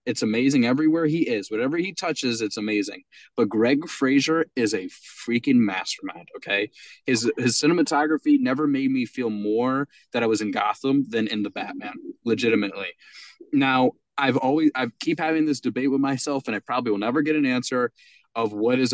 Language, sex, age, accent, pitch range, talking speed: English, male, 20-39, American, 115-165 Hz, 180 wpm